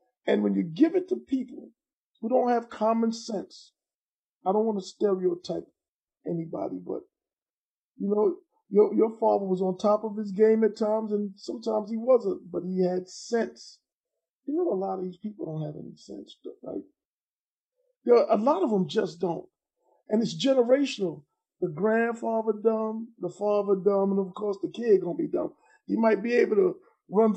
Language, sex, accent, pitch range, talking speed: English, male, American, 185-235 Hz, 180 wpm